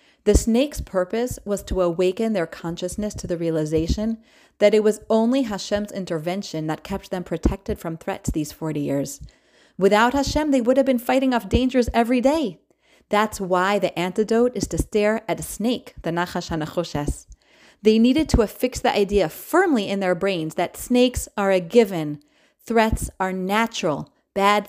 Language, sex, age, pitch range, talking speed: English, female, 30-49, 175-230 Hz, 170 wpm